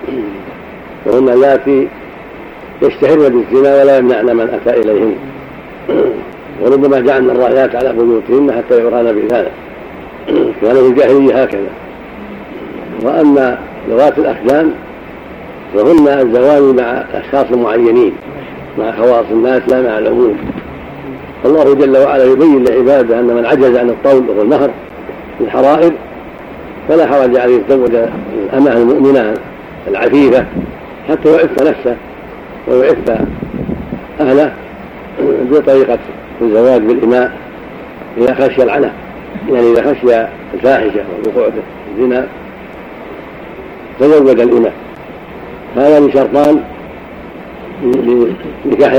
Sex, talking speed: male, 95 wpm